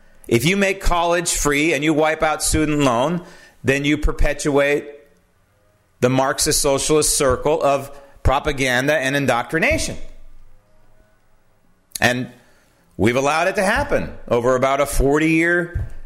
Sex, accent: male, American